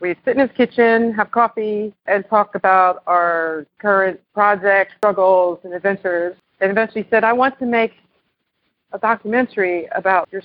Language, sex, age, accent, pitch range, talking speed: English, female, 40-59, American, 170-205 Hz, 160 wpm